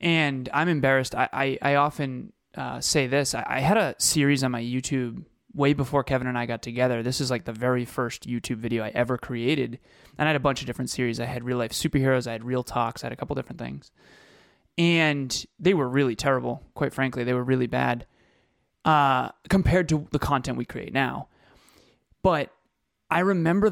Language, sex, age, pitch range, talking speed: English, male, 20-39, 125-140 Hz, 205 wpm